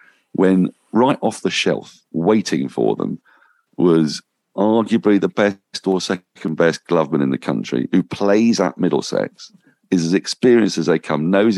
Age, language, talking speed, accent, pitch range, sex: 50-69, English, 155 wpm, British, 75-95 Hz, male